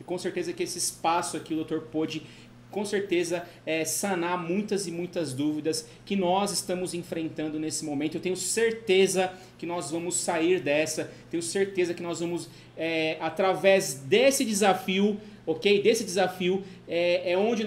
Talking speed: 155 wpm